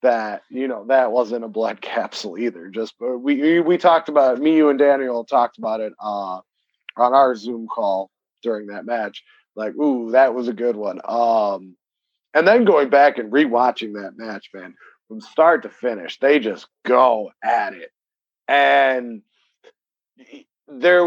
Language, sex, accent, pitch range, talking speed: English, male, American, 120-150 Hz, 170 wpm